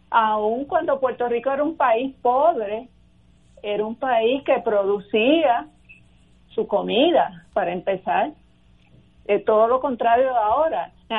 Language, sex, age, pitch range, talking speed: Spanish, female, 50-69, 205-255 Hz, 125 wpm